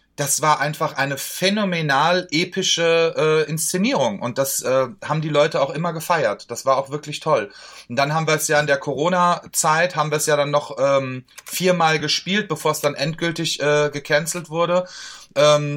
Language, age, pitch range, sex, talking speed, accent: German, 30-49, 135-165 Hz, male, 185 wpm, German